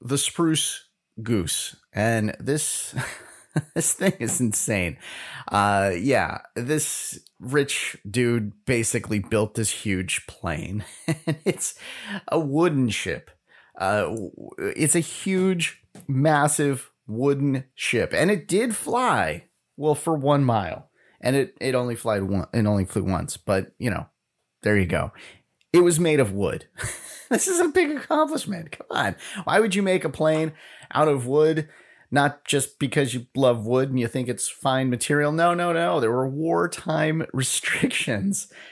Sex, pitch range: male, 125-170 Hz